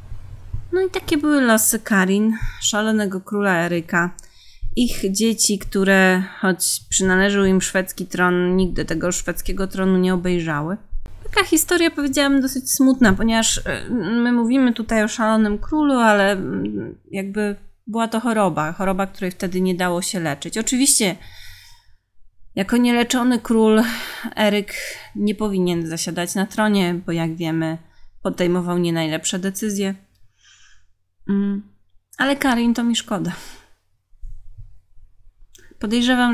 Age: 30-49